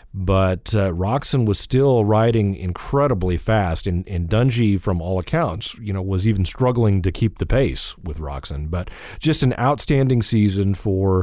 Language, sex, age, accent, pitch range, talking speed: English, male, 40-59, American, 95-115 Hz, 165 wpm